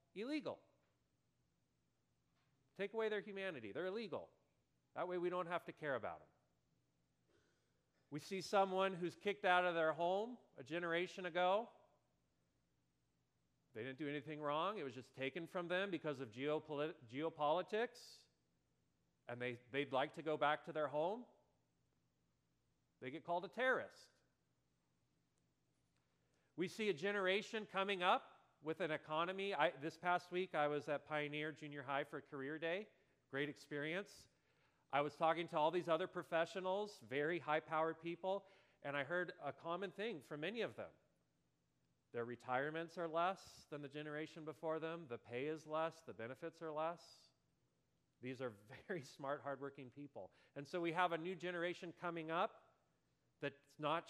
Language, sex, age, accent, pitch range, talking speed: English, male, 40-59, American, 140-180 Hz, 150 wpm